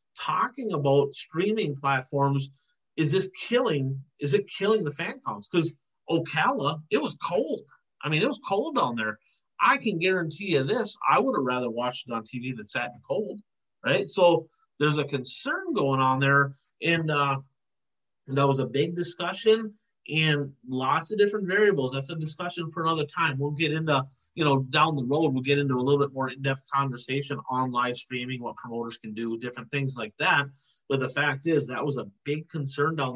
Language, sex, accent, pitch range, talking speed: English, male, American, 130-160 Hz, 195 wpm